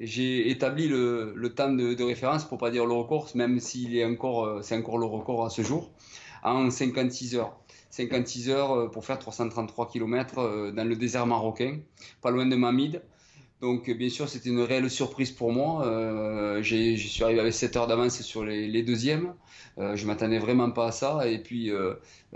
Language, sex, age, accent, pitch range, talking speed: French, male, 20-39, French, 110-125 Hz, 195 wpm